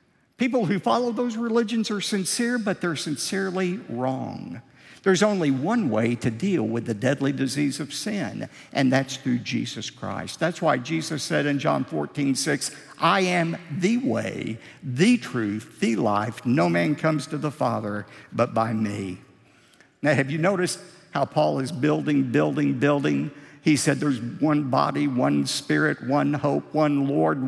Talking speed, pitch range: 160 wpm, 135-190 Hz